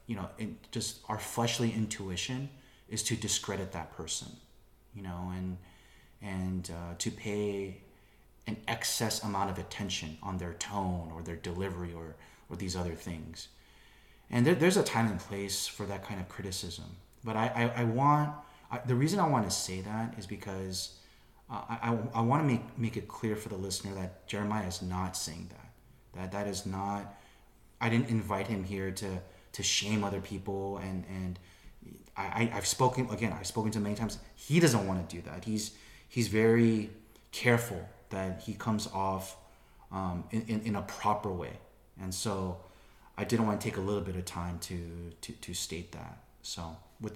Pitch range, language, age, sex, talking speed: 95-110 Hz, English, 30-49, male, 185 wpm